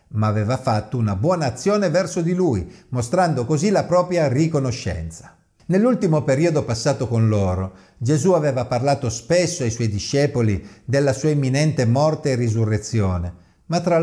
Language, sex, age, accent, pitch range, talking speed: Italian, male, 50-69, native, 110-160 Hz, 145 wpm